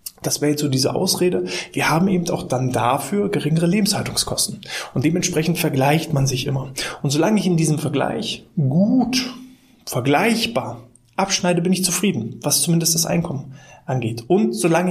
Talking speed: 160 wpm